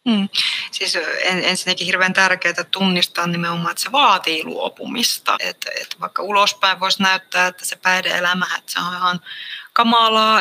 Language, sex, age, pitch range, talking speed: Finnish, female, 20-39, 165-190 Hz, 135 wpm